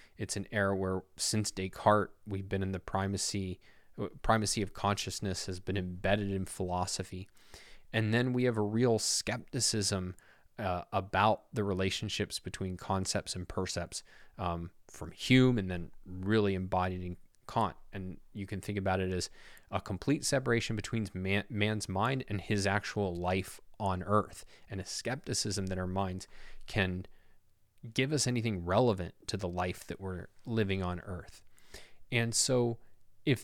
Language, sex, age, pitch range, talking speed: English, male, 20-39, 95-115 Hz, 155 wpm